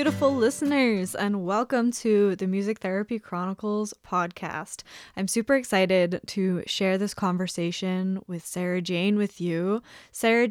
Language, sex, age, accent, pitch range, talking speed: English, female, 10-29, American, 180-220 Hz, 130 wpm